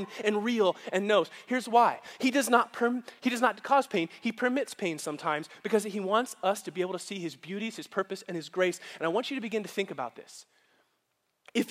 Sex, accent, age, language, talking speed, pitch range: male, American, 20-39, English, 220 wpm, 175-230 Hz